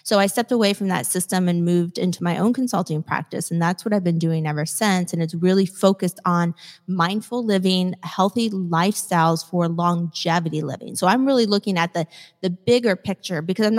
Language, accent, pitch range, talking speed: English, American, 165-190 Hz, 195 wpm